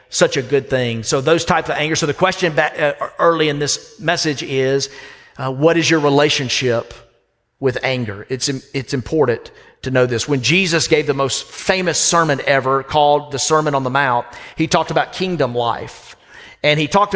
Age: 40-59